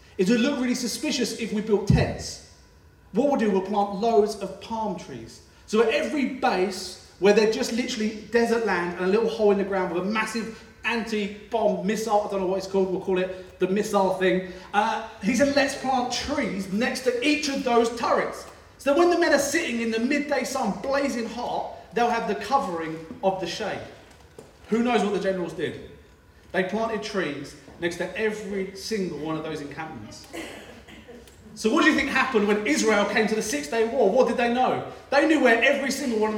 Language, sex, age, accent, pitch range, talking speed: English, male, 40-59, British, 195-245 Hz, 205 wpm